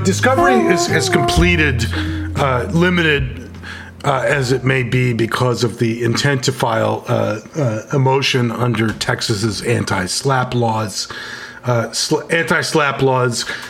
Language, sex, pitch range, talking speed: English, male, 115-140 Hz, 120 wpm